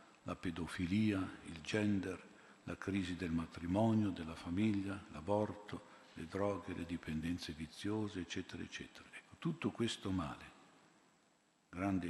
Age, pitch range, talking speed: 50-69, 90-105 Hz, 110 wpm